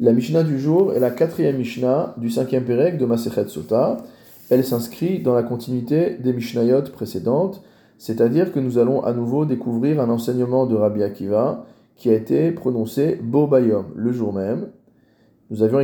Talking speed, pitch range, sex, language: 165 wpm, 115-140 Hz, male, French